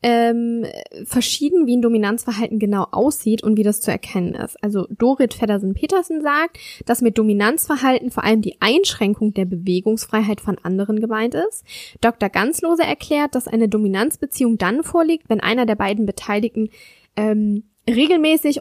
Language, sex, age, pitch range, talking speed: German, female, 10-29, 215-290 Hz, 145 wpm